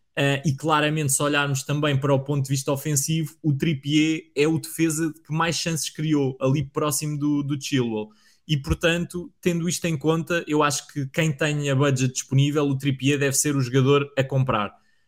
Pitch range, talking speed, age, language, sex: 130-145 Hz, 185 wpm, 20-39, Portuguese, male